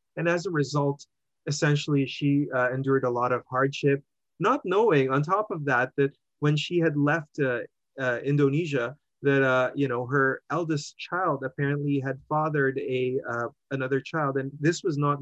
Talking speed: 175 wpm